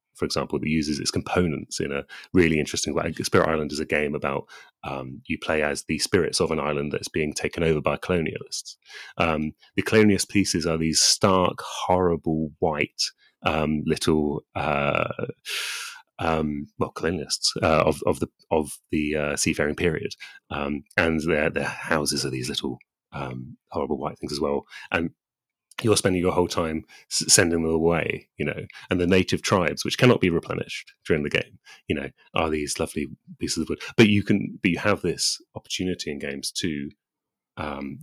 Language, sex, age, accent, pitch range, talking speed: English, male, 30-49, British, 75-90 Hz, 180 wpm